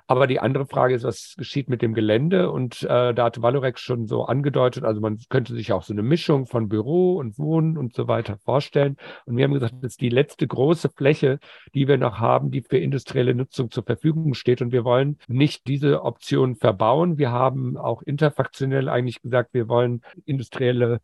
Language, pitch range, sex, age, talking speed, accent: German, 120-145 Hz, male, 50-69, 205 wpm, German